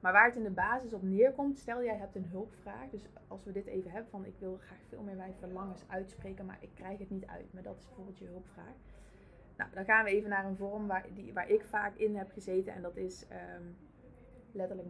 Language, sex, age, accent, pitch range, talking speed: Dutch, female, 20-39, Dutch, 185-210 Hz, 240 wpm